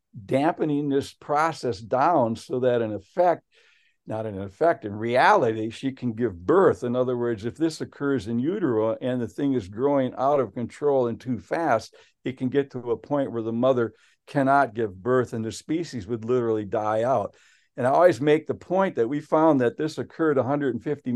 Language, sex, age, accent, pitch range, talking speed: English, male, 60-79, American, 120-160 Hz, 195 wpm